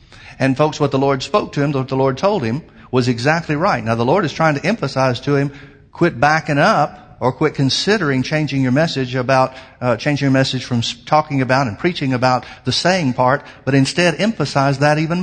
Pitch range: 120-150 Hz